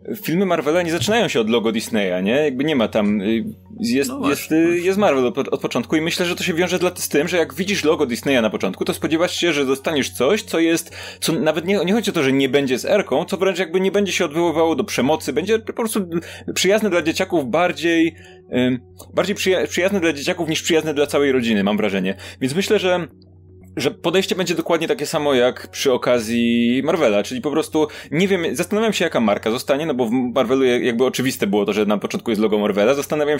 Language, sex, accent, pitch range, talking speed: Polish, male, native, 120-170 Hz, 215 wpm